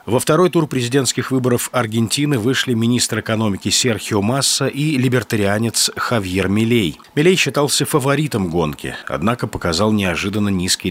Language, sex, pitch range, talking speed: Russian, male, 95-130 Hz, 125 wpm